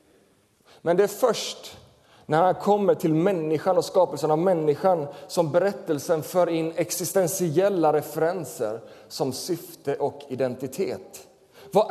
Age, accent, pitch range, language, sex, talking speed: 30-49, native, 150-215 Hz, Swedish, male, 120 wpm